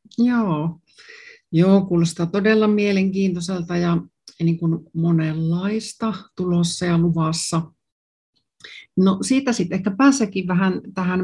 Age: 60-79